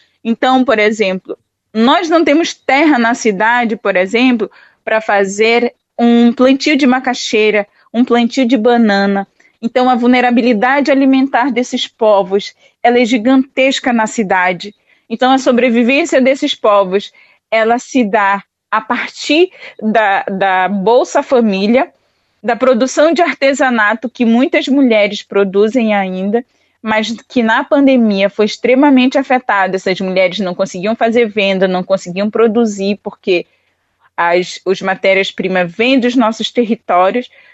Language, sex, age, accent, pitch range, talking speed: Portuguese, female, 20-39, Brazilian, 205-255 Hz, 125 wpm